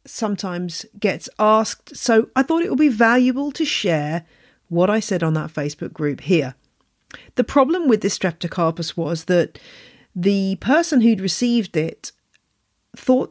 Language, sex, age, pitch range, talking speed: English, female, 40-59, 160-210 Hz, 150 wpm